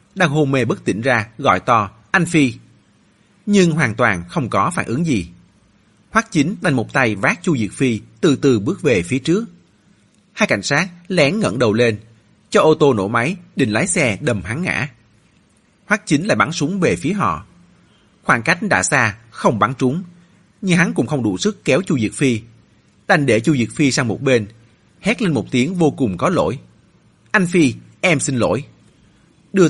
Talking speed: 200 wpm